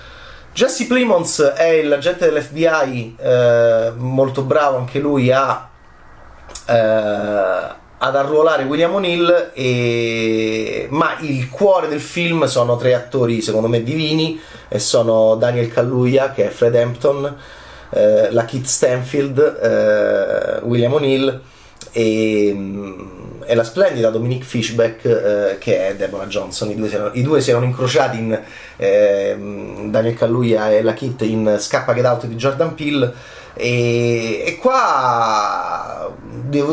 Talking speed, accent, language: 130 wpm, native, Italian